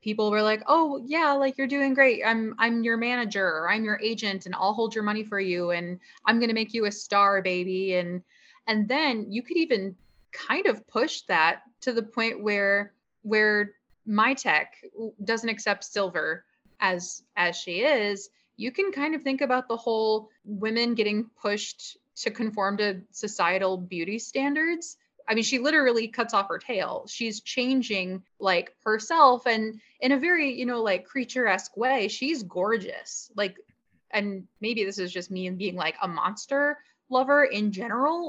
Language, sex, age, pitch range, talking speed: English, female, 20-39, 200-255 Hz, 175 wpm